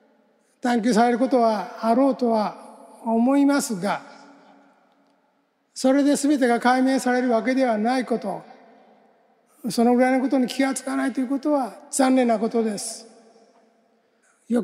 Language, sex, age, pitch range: Japanese, male, 60-79, 225-255 Hz